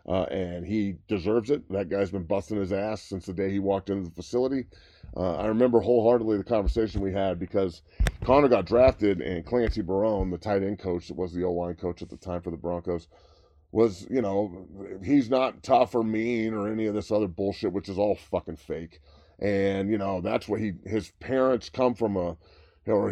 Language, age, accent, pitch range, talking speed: English, 30-49, American, 90-110 Hz, 210 wpm